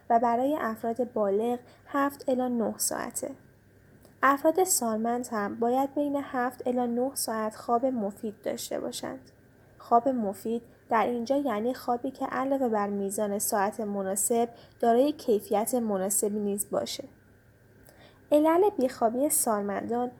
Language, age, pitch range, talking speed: Persian, 10-29, 215-255 Hz, 120 wpm